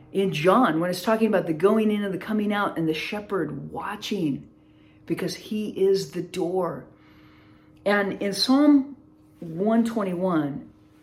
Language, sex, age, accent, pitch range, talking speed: English, female, 40-59, American, 160-225 Hz, 140 wpm